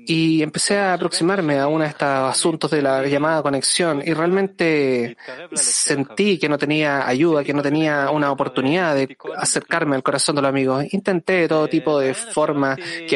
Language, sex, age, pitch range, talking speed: English, male, 20-39, 135-160 Hz, 175 wpm